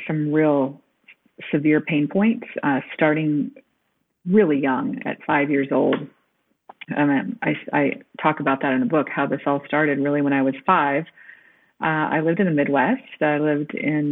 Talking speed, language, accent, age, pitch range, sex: 170 wpm, English, American, 40-59, 150-210 Hz, female